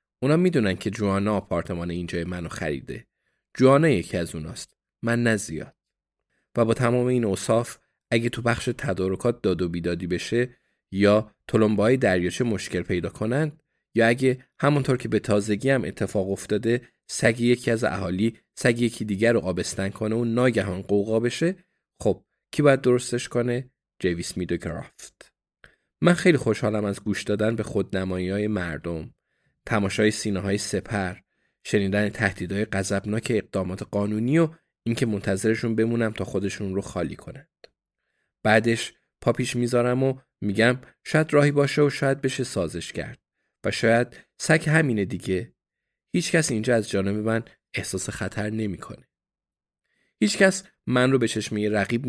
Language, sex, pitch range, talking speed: Persian, male, 100-125 Hz, 140 wpm